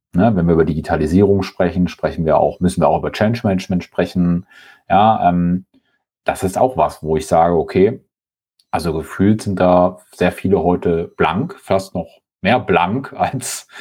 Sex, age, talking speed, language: male, 40-59, 170 wpm, German